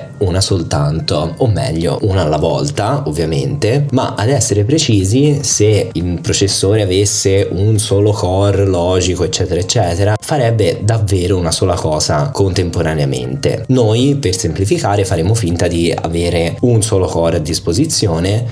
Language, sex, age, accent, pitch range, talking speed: Italian, male, 20-39, native, 90-125 Hz, 130 wpm